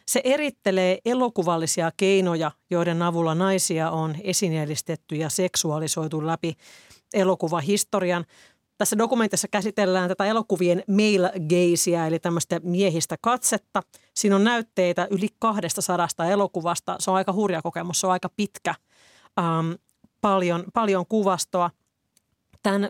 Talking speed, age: 115 wpm, 30-49